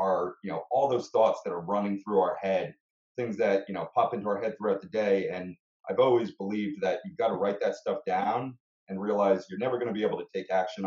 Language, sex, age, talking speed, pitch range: English, male, 30-49, 255 wpm, 90-105 Hz